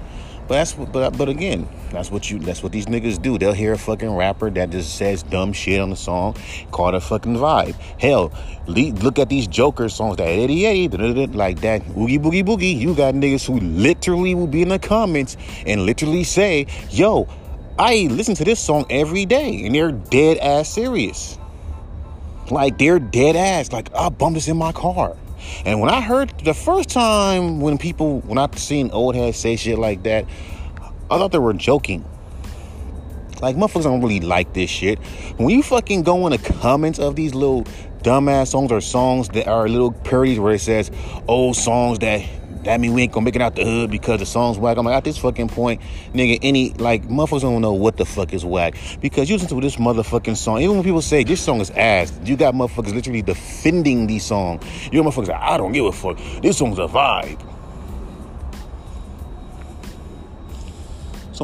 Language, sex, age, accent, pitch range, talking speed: English, male, 30-49, American, 95-145 Hz, 195 wpm